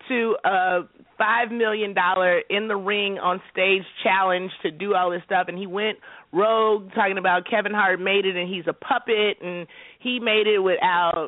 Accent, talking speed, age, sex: American, 185 wpm, 30-49, female